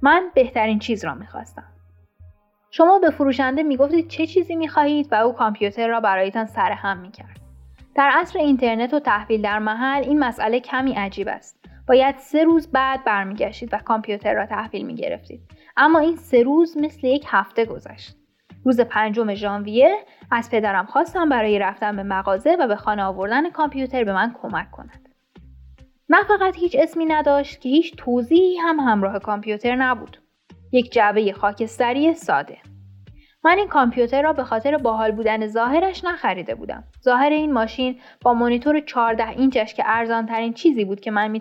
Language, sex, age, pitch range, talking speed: Persian, female, 10-29, 210-295 Hz, 155 wpm